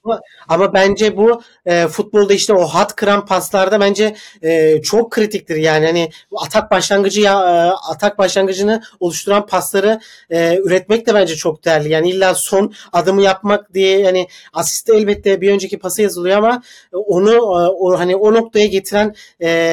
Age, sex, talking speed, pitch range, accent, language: 40-59, male, 160 wpm, 170-215 Hz, native, Turkish